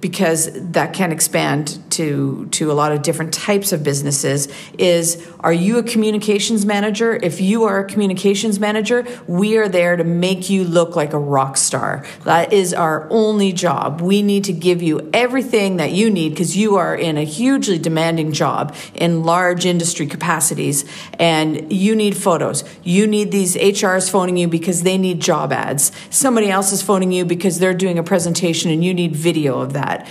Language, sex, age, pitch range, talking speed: English, female, 50-69, 165-200 Hz, 185 wpm